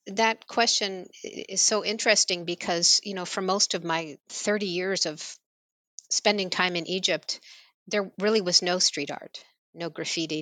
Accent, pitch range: American, 165-195 Hz